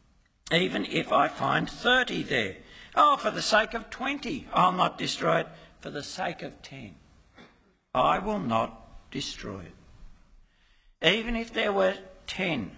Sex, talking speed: male, 145 wpm